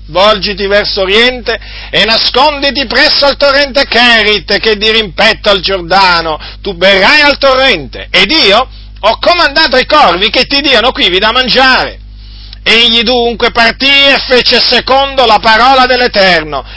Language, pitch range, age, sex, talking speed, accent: Italian, 145-235 Hz, 50-69, male, 135 wpm, native